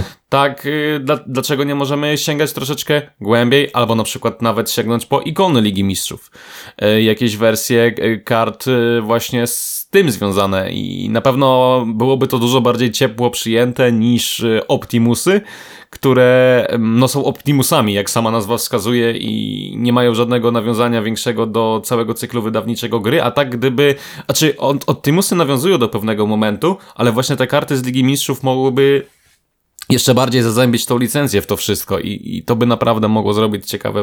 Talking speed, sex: 150 wpm, male